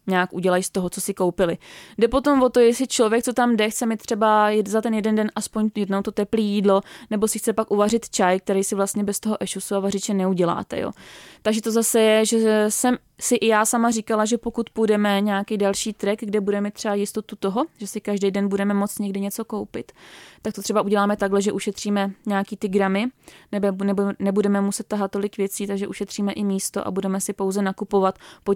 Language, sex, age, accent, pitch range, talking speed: Czech, female, 20-39, native, 200-220 Hz, 215 wpm